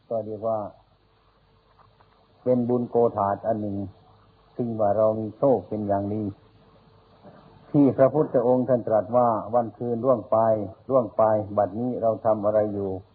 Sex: male